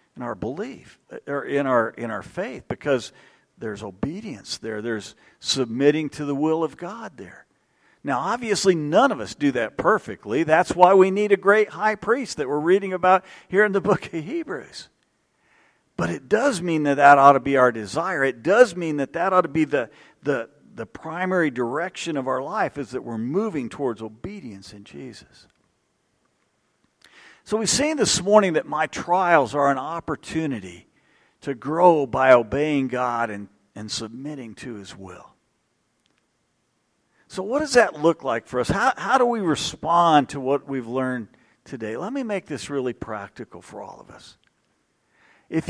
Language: English